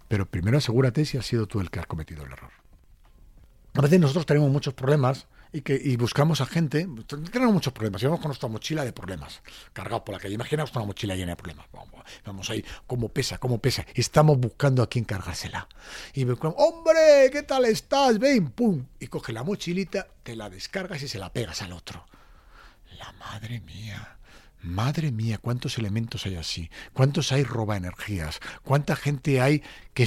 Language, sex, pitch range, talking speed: Spanish, male, 105-155 Hz, 185 wpm